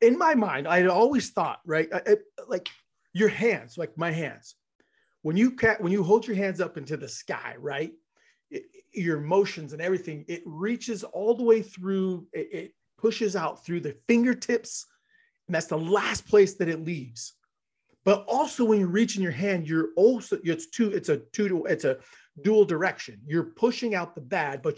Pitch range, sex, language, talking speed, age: 160-230 Hz, male, English, 180 wpm, 30-49